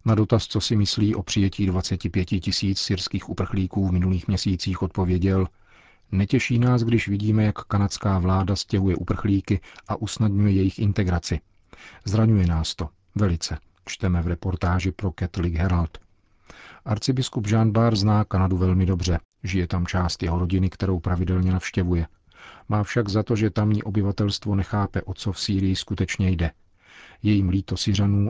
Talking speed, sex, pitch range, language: 150 wpm, male, 90-105 Hz, Czech